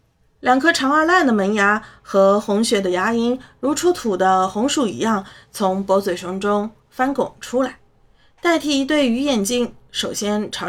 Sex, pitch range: female, 200-265 Hz